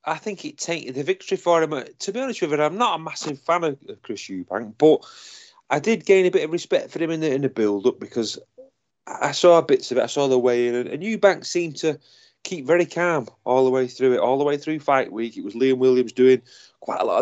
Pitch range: 115-150 Hz